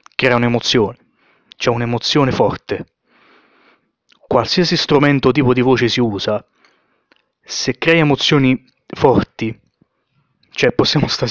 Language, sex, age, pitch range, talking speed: Italian, male, 20-39, 115-130 Hz, 105 wpm